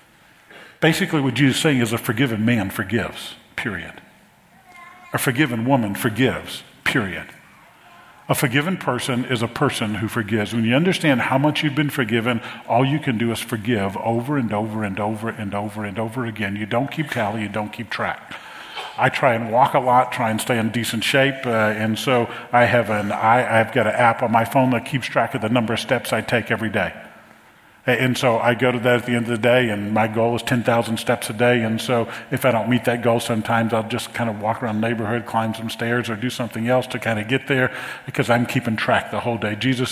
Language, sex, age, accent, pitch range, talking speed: English, male, 50-69, American, 110-130 Hz, 220 wpm